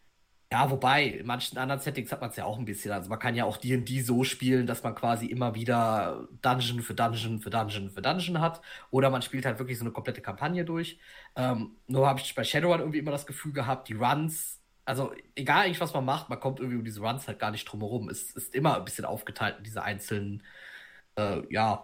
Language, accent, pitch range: German, German, 115-140 Hz